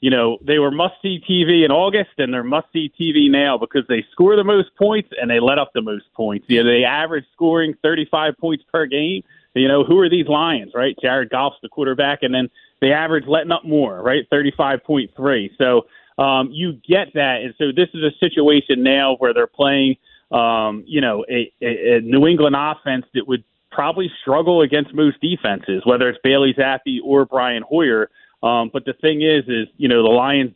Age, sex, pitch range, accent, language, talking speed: 30-49, male, 120-155 Hz, American, English, 200 wpm